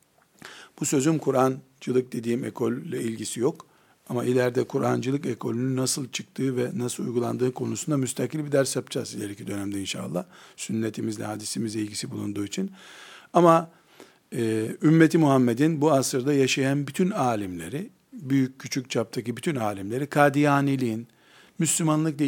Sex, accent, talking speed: male, native, 120 wpm